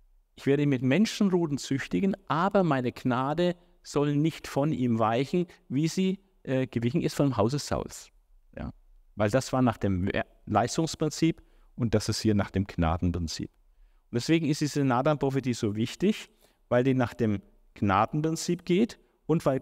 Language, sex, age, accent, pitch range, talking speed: German, male, 50-69, German, 100-150 Hz, 160 wpm